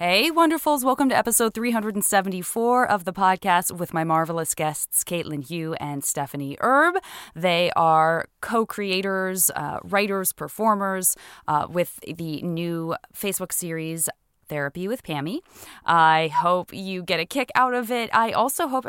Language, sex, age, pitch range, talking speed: English, female, 20-39, 175-235 Hz, 145 wpm